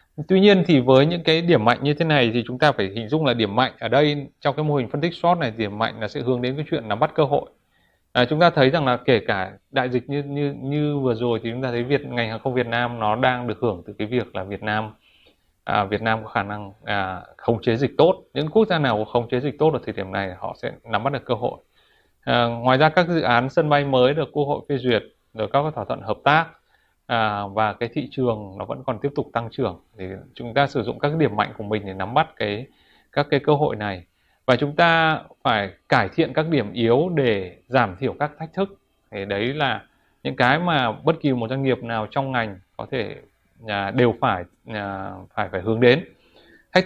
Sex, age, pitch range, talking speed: male, 20-39, 110-145 Hz, 255 wpm